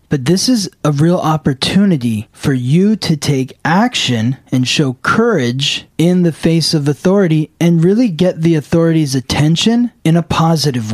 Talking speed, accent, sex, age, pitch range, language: 155 wpm, American, male, 20-39, 120-160 Hz, English